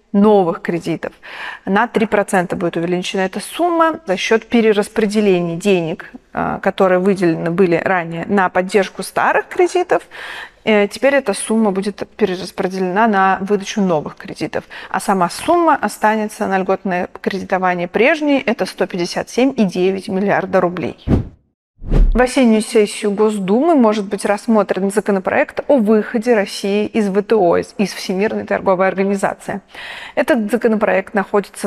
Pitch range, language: 190-225 Hz, Russian